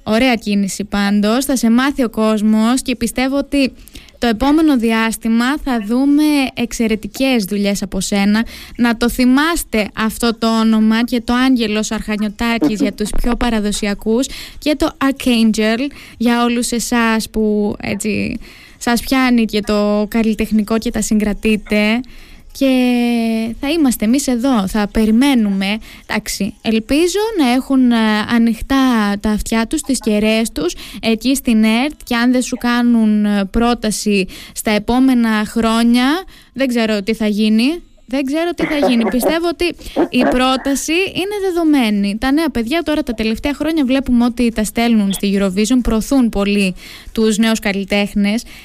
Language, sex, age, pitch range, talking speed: Greek, female, 20-39, 215-265 Hz, 140 wpm